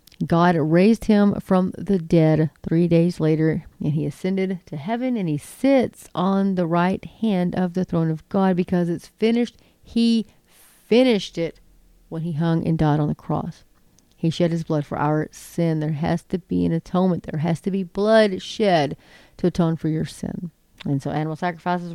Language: English